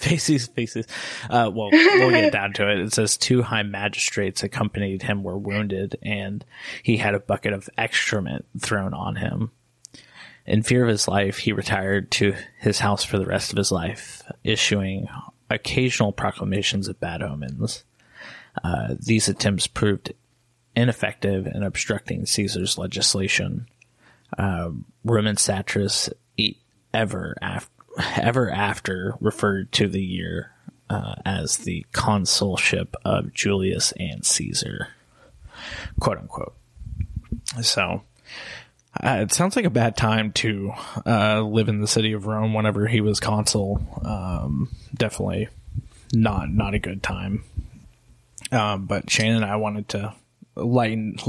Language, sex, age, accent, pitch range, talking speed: English, male, 20-39, American, 100-115 Hz, 135 wpm